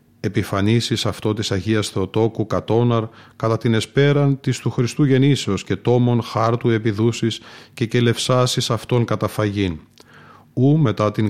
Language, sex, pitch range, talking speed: Greek, male, 110-130 Hz, 135 wpm